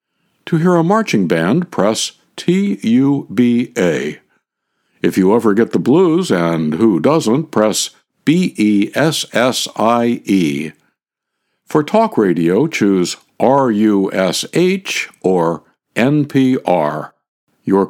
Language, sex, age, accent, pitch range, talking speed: English, male, 60-79, American, 95-135 Hz, 85 wpm